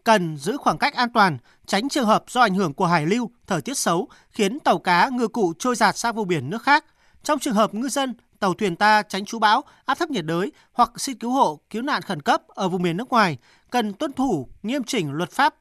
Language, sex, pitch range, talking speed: Vietnamese, male, 185-250 Hz, 250 wpm